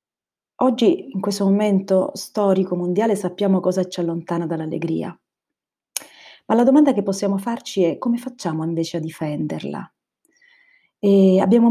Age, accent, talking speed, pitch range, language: 40-59, native, 125 wpm, 165-195 Hz, Italian